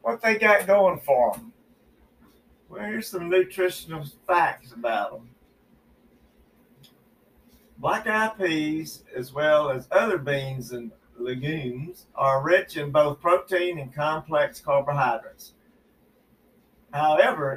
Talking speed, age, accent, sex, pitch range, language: 105 wpm, 50-69, American, male, 135-185 Hz, English